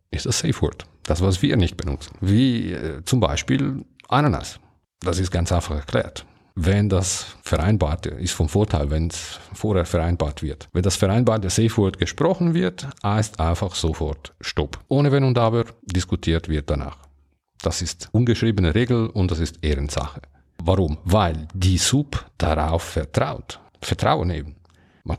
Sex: male